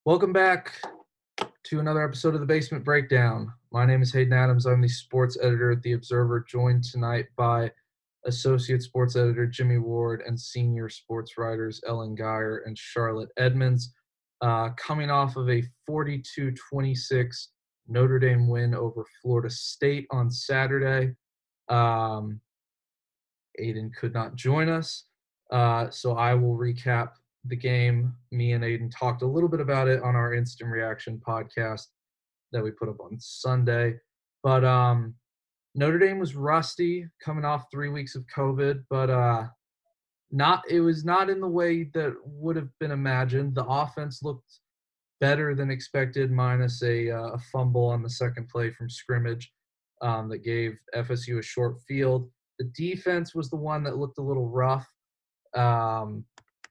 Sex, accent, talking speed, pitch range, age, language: male, American, 155 wpm, 120-140 Hz, 20-39, English